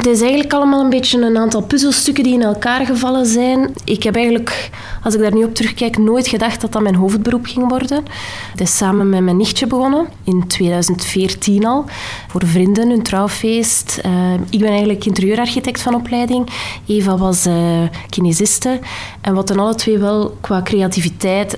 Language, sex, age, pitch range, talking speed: Dutch, female, 20-39, 180-225 Hz, 170 wpm